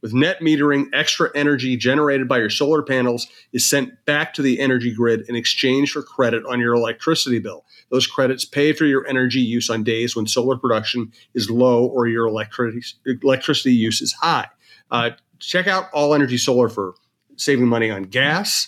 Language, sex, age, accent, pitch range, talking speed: English, male, 30-49, American, 120-145 Hz, 180 wpm